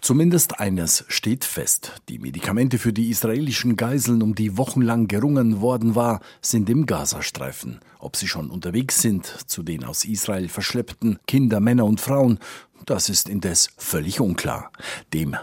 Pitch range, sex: 100-120 Hz, male